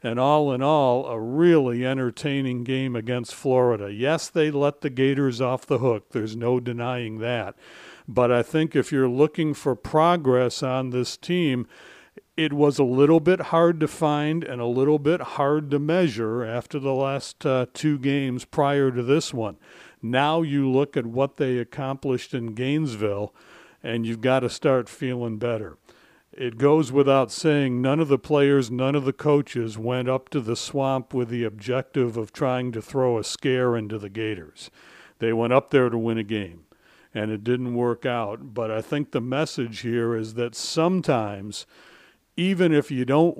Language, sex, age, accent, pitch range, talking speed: English, male, 60-79, American, 120-145 Hz, 180 wpm